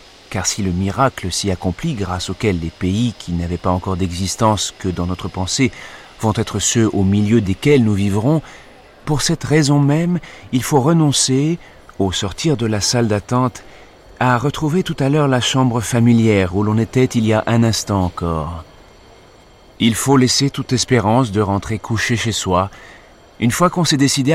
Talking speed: 175 wpm